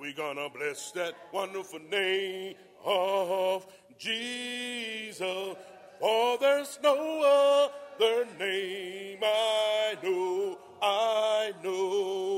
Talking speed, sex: 80 wpm, male